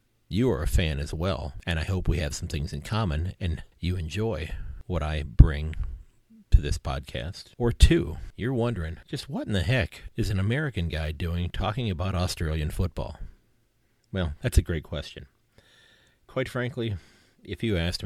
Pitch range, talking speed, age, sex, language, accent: 80-105 Hz, 175 wpm, 40-59, male, English, American